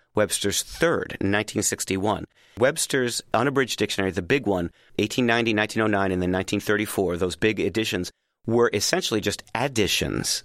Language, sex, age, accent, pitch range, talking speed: English, male, 40-59, American, 100-120 Hz, 120 wpm